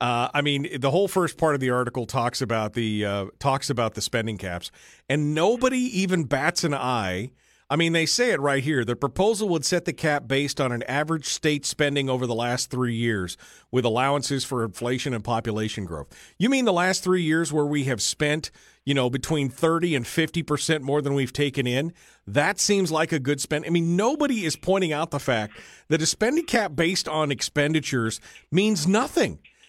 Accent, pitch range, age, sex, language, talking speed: American, 135-185 Hz, 40-59, male, English, 205 wpm